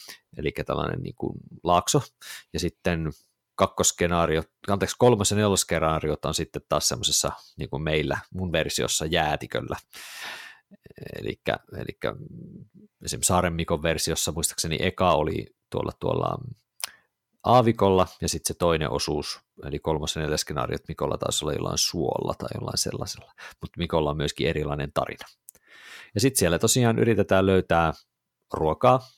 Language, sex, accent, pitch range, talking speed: Finnish, male, native, 80-110 Hz, 120 wpm